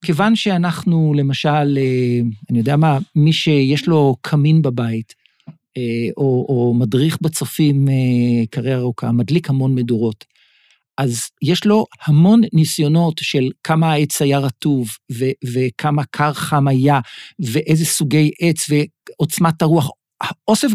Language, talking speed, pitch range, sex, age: Hebrew, 120 wpm, 135-180 Hz, male, 50-69